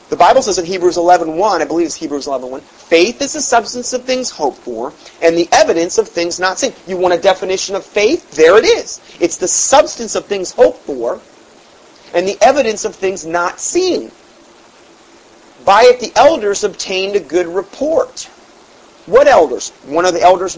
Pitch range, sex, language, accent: 170-235 Hz, male, English, American